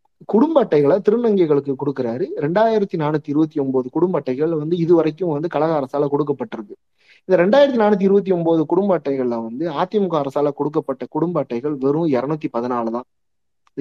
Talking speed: 145 wpm